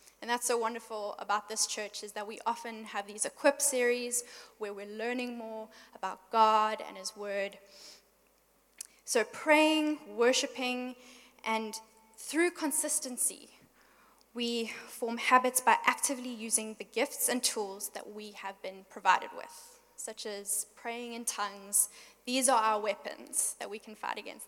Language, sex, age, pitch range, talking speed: English, female, 10-29, 215-245 Hz, 145 wpm